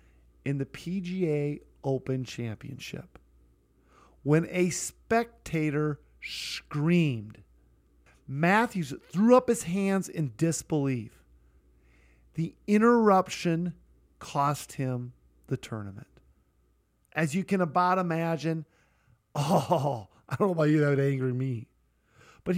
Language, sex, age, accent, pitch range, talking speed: English, male, 40-59, American, 125-180 Hz, 100 wpm